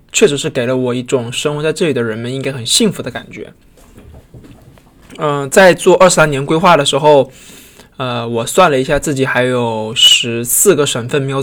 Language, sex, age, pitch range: Chinese, male, 20-39, 125-150 Hz